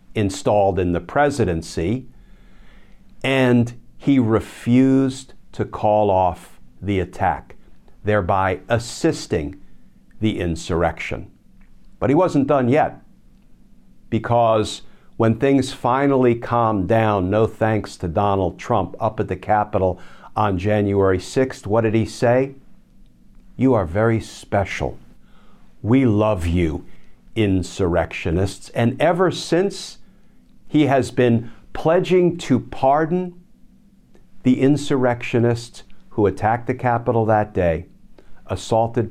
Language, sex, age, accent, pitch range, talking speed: English, male, 50-69, American, 100-130 Hz, 105 wpm